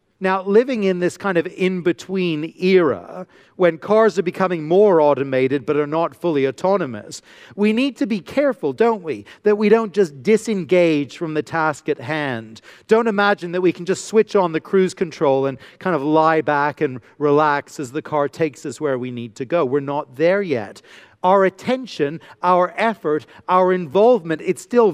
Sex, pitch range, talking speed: male, 155-195 Hz, 185 wpm